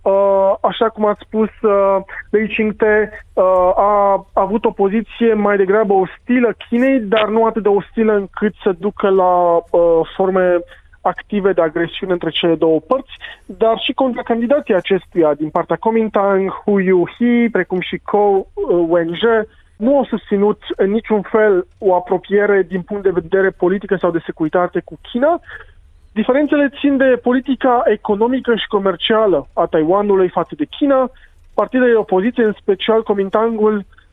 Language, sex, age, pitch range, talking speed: Romanian, male, 20-39, 185-225 Hz, 145 wpm